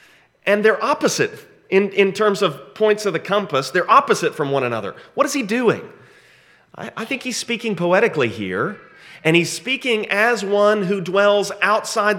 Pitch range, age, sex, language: 140-205 Hz, 30-49, male, English